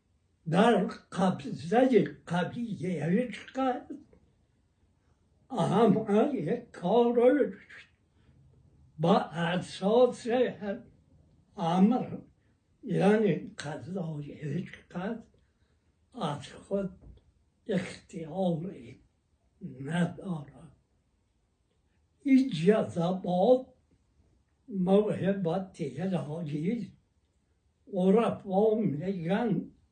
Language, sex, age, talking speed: Persian, male, 60-79, 35 wpm